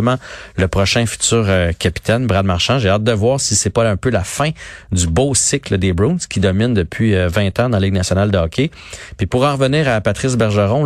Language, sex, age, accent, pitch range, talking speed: French, male, 40-59, Canadian, 95-120 Hz, 230 wpm